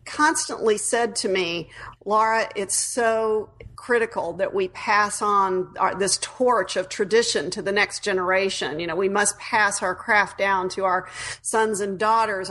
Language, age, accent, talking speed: English, 40-59, American, 160 wpm